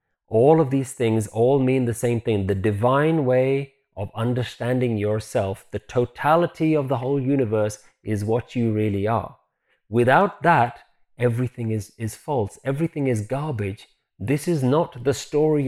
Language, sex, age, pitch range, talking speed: English, male, 30-49, 115-145 Hz, 155 wpm